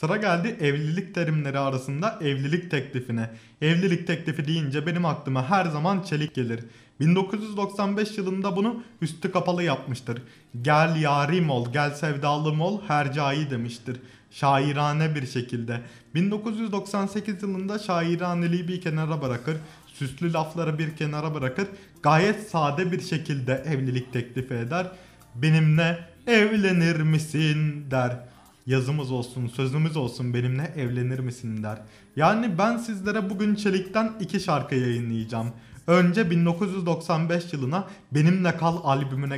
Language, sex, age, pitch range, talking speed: Turkish, male, 30-49, 140-185 Hz, 115 wpm